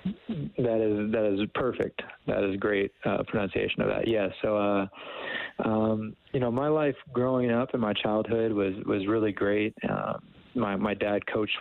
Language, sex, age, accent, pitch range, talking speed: English, male, 20-39, American, 95-105 Hz, 180 wpm